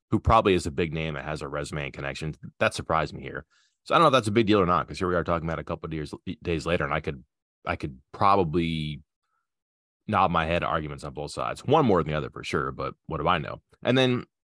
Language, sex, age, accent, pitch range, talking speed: English, male, 30-49, American, 75-95 Hz, 275 wpm